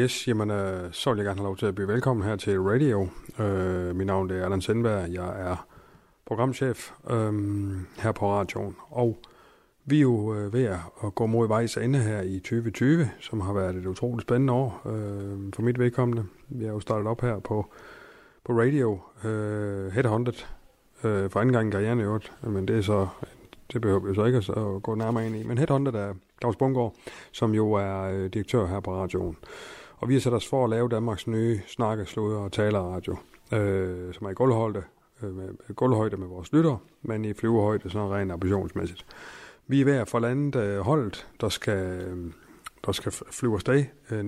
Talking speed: 200 wpm